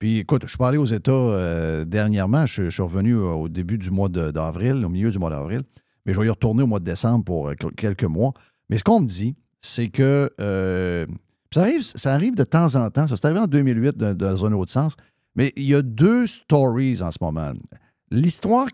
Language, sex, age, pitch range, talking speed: French, male, 50-69, 105-140 Hz, 235 wpm